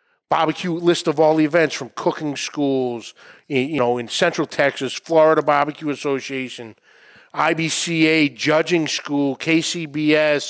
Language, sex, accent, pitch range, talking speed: English, male, American, 150-180 Hz, 120 wpm